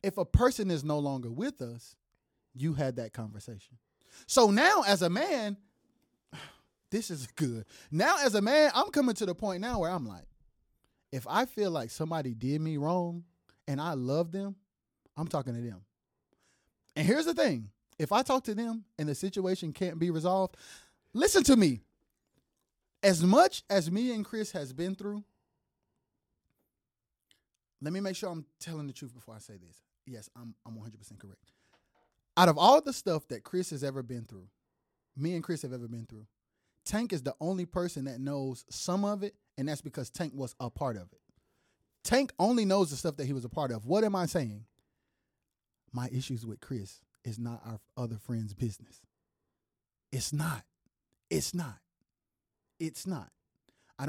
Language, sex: English, male